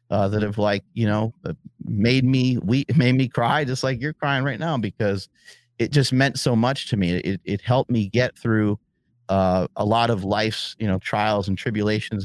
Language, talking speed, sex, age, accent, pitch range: English, 205 wpm, male, 30-49, American, 105-125 Hz